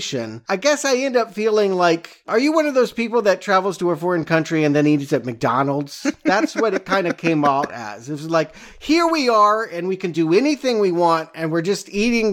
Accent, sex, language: American, male, English